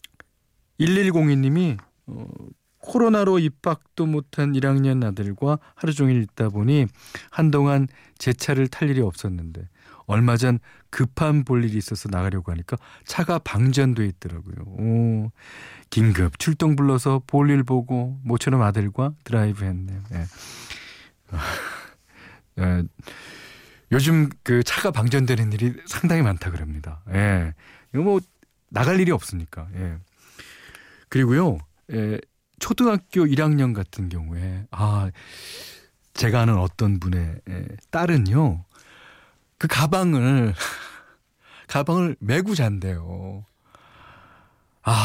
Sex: male